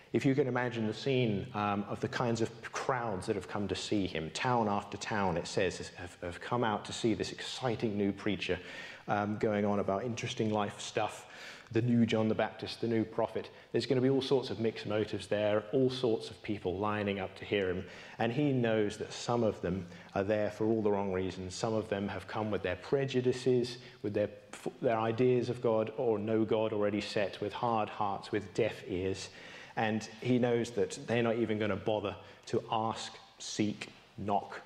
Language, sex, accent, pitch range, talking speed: English, male, British, 100-115 Hz, 210 wpm